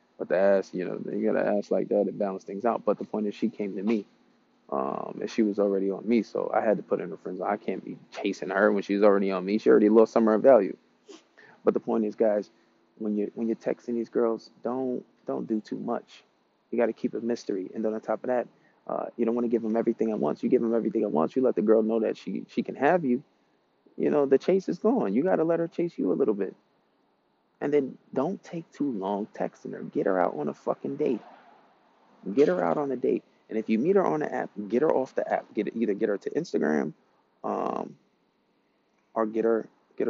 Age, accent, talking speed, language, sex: 20-39, American, 255 wpm, English, male